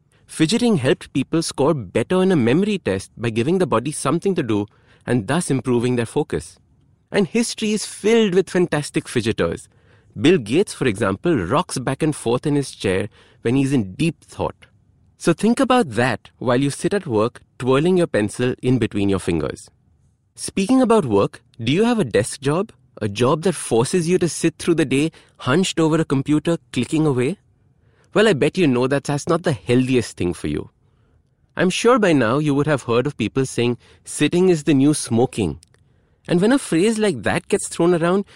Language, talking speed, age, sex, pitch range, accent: English, 190 wpm, 30-49, male, 120-175 Hz, Indian